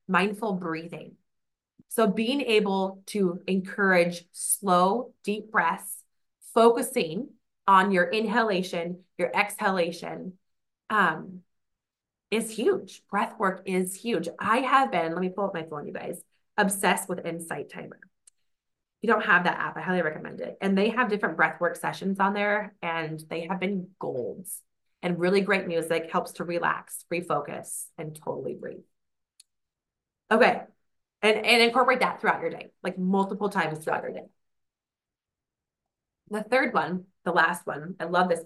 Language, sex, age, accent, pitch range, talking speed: English, female, 20-39, American, 170-210 Hz, 150 wpm